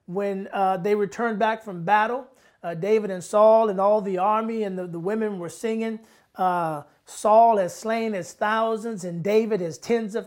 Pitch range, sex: 185-220 Hz, male